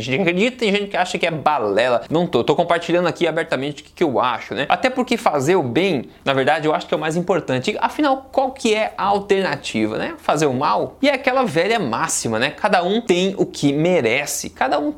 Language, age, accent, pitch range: Portuguese, 20-39, Brazilian, 155-205 Hz